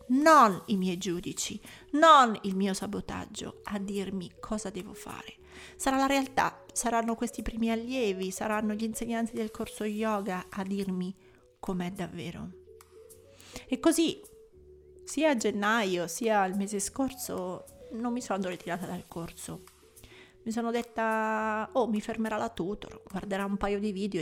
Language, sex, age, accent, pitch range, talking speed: Italian, female, 30-49, native, 190-255 Hz, 145 wpm